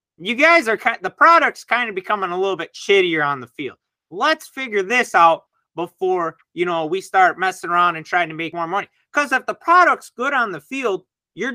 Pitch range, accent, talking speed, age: 160-230 Hz, American, 215 wpm, 30-49